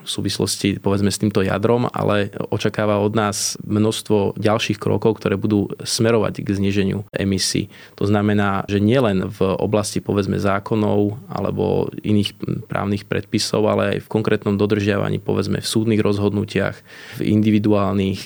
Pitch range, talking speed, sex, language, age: 100-110 Hz, 140 wpm, male, Slovak, 20-39